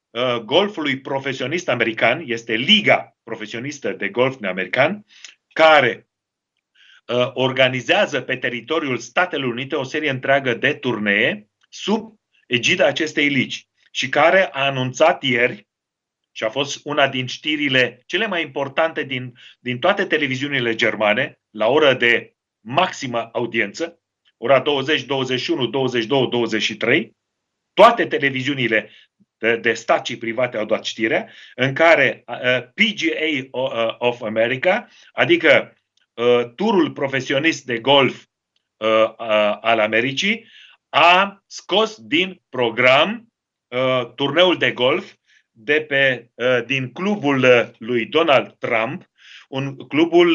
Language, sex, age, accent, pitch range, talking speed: Romanian, male, 40-59, native, 125-165 Hz, 115 wpm